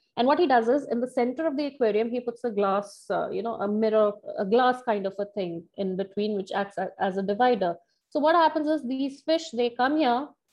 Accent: Indian